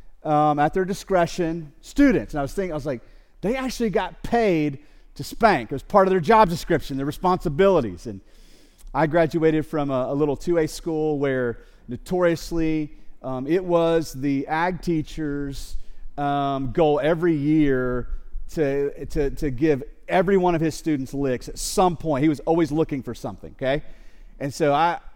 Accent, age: American, 30-49